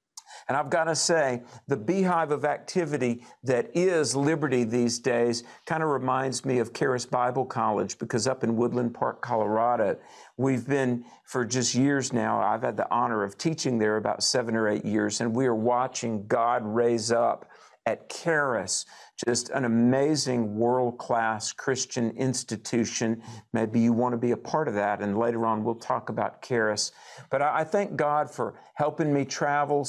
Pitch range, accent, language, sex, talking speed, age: 115-145 Hz, American, English, male, 170 wpm, 50-69